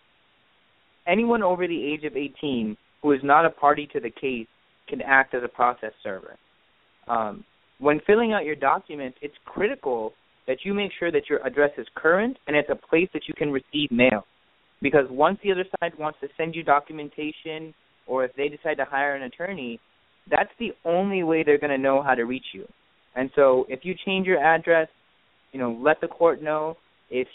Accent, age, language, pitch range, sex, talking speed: American, 20-39, English, 135-175 Hz, male, 195 wpm